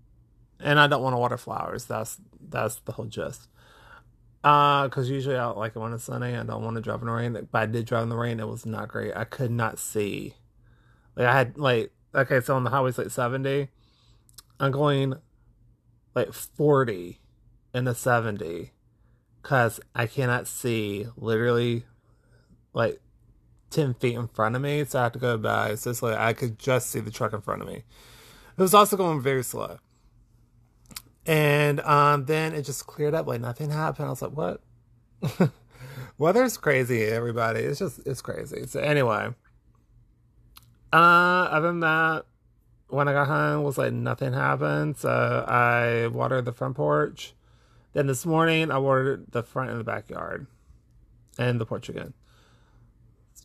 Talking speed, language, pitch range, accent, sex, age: 175 wpm, English, 115-140 Hz, American, male, 20-39